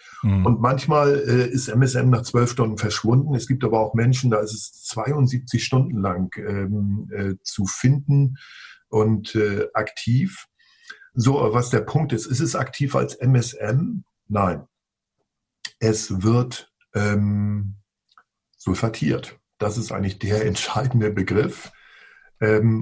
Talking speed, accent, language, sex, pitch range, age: 130 wpm, German, German, male, 105-125 Hz, 50-69